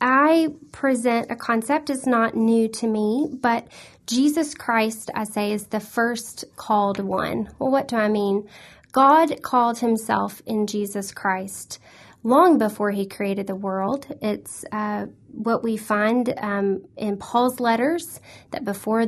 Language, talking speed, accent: English, 150 wpm, American